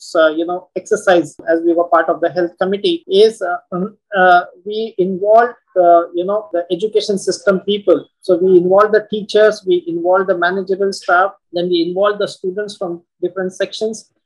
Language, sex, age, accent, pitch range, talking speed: English, male, 30-49, Indian, 175-210 Hz, 170 wpm